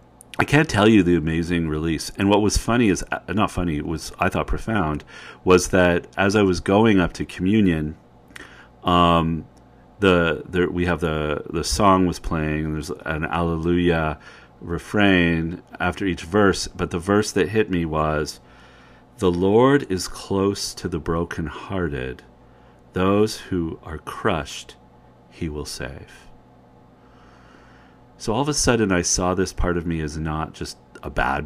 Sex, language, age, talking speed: male, English, 40-59, 160 wpm